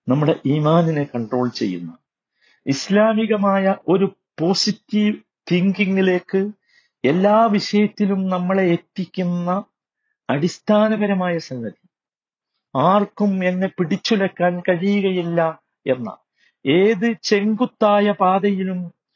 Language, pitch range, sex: Malayalam, 160-205 Hz, male